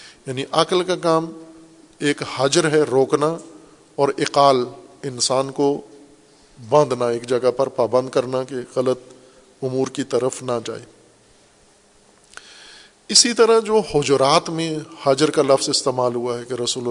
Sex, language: male, Urdu